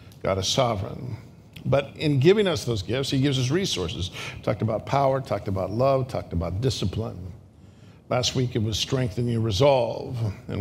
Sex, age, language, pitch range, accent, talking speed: male, 50-69, English, 105-135 Hz, American, 170 wpm